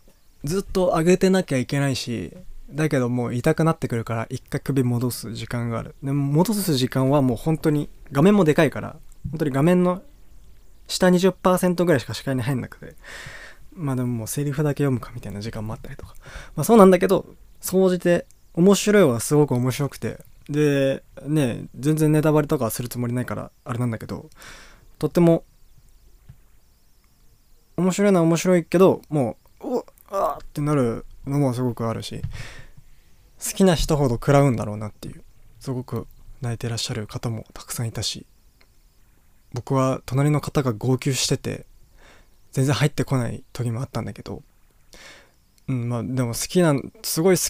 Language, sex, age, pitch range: Japanese, male, 20-39, 120-165 Hz